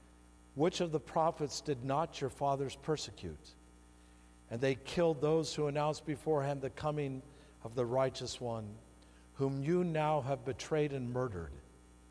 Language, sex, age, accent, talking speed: English, male, 50-69, American, 145 wpm